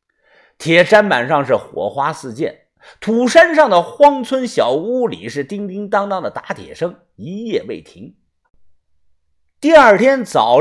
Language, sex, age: Chinese, male, 50-69